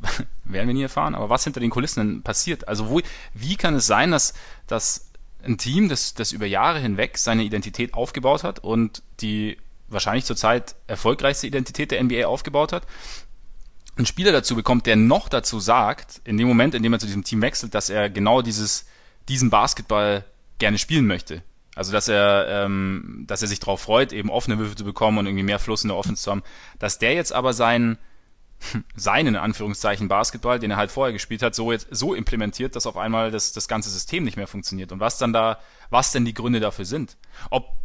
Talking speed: 205 wpm